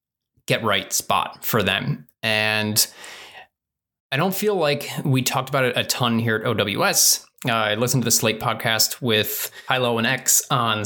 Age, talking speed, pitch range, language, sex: 20-39, 170 wpm, 110-135 Hz, English, male